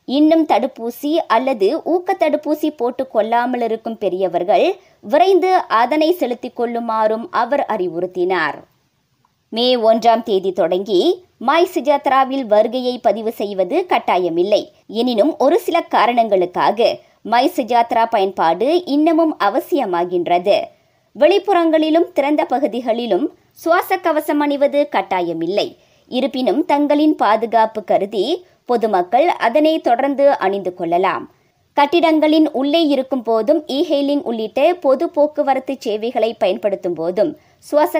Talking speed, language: 95 wpm, Tamil